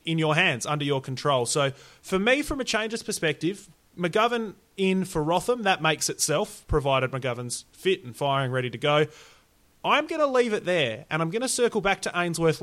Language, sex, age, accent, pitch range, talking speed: English, male, 30-49, Australian, 140-190 Hz, 200 wpm